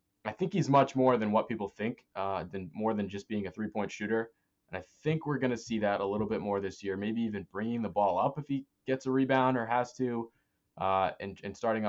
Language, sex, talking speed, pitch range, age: English, male, 255 wpm, 95-125 Hz, 20-39